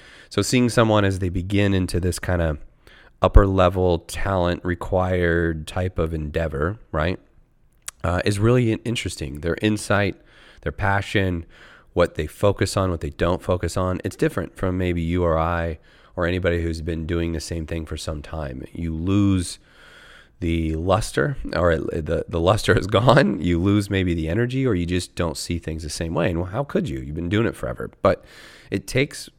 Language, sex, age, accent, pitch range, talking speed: English, male, 30-49, American, 80-95 Hz, 185 wpm